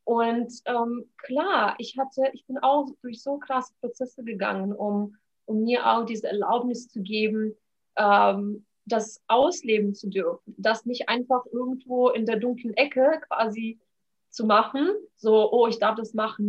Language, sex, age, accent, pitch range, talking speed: German, female, 30-49, German, 205-250 Hz, 155 wpm